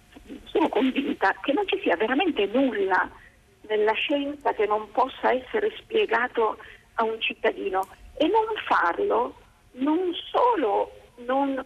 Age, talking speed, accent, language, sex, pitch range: 50-69, 120 wpm, native, Italian, female, 230-385 Hz